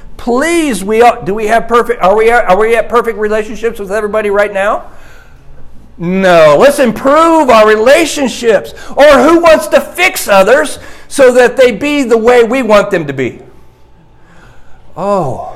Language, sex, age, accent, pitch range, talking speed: English, male, 50-69, American, 155-230 Hz, 160 wpm